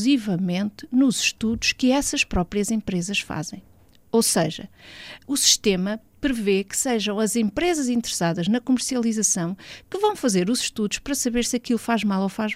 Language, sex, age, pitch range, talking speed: Portuguese, female, 50-69, 185-255 Hz, 160 wpm